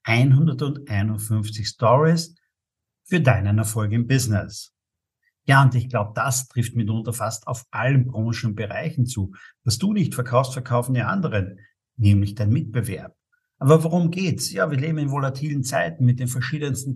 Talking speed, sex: 150 wpm, male